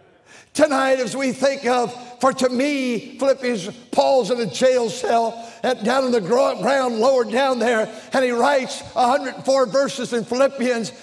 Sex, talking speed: male, 150 wpm